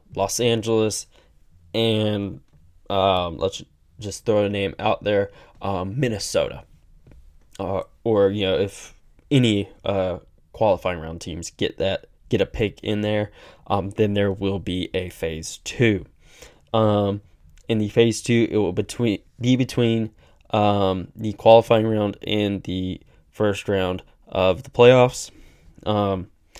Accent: American